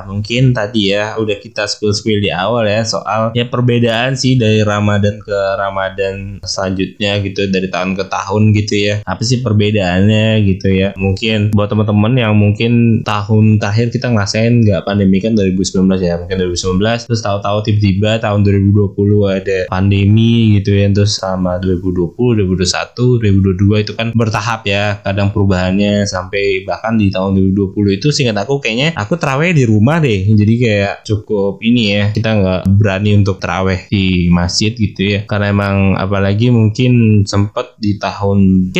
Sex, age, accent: male, 20-39, native